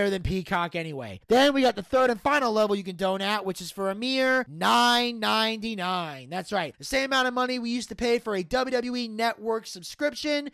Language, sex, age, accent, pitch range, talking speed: English, male, 30-49, American, 185-255 Hz, 205 wpm